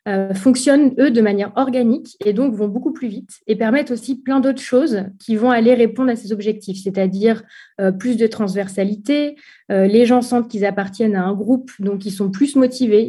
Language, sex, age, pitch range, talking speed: French, female, 30-49, 200-250 Hz, 190 wpm